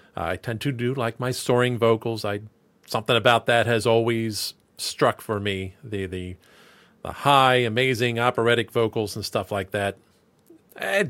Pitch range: 100-130 Hz